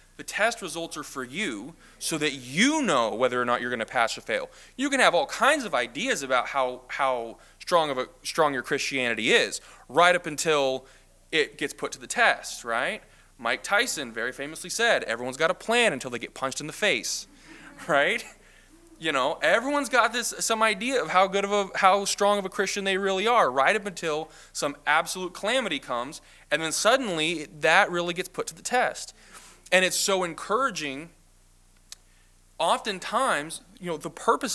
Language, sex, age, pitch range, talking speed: English, male, 20-39, 145-210 Hz, 190 wpm